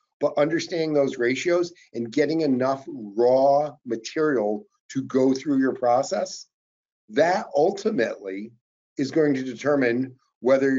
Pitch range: 115-140 Hz